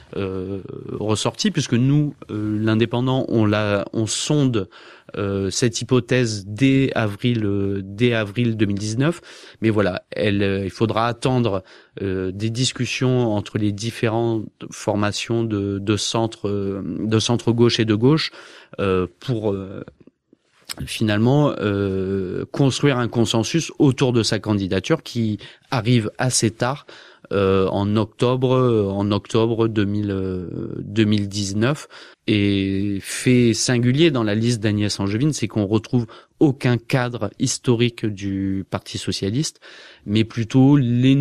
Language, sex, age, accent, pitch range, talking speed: French, male, 30-49, French, 100-125 Hz, 125 wpm